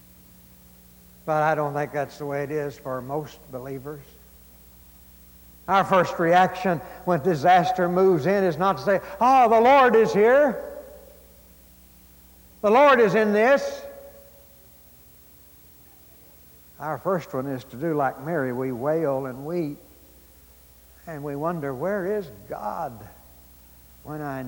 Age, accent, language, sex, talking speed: 60-79, American, English, male, 130 wpm